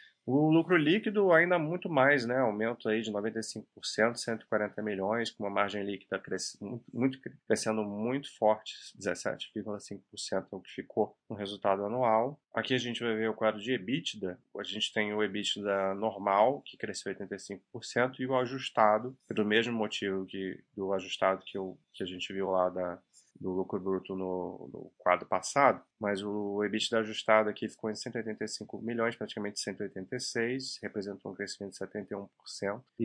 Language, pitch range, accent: Portuguese, 100-125 Hz, Brazilian